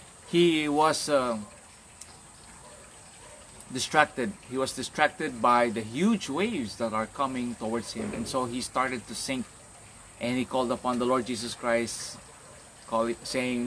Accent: Filipino